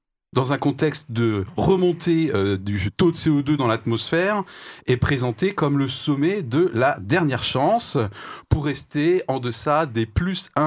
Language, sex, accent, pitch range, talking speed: French, male, French, 115-165 Hz, 150 wpm